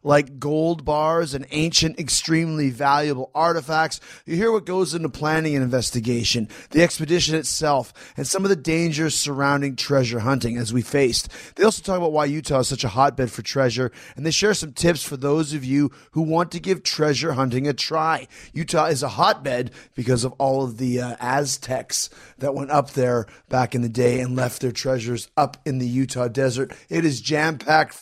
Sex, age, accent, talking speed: male, 30-49, American, 195 wpm